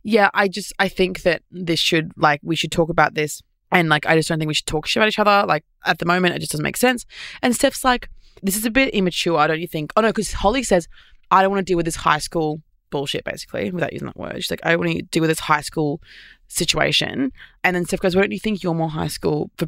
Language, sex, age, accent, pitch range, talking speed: English, female, 20-39, Australian, 155-190 Hz, 280 wpm